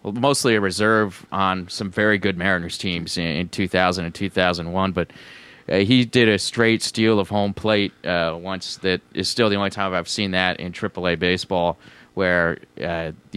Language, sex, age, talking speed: English, male, 30-49, 180 wpm